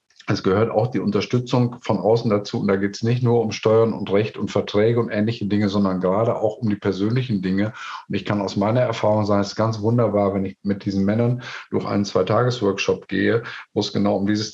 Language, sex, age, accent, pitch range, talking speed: German, male, 50-69, German, 100-120 Hz, 225 wpm